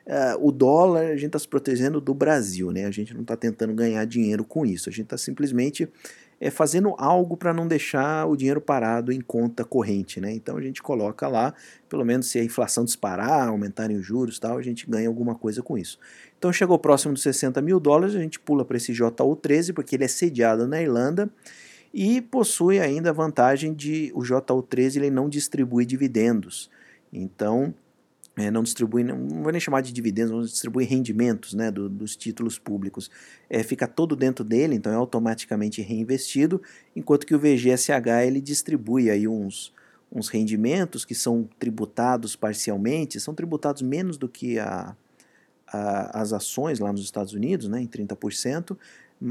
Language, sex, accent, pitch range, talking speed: Portuguese, male, Brazilian, 115-145 Hz, 180 wpm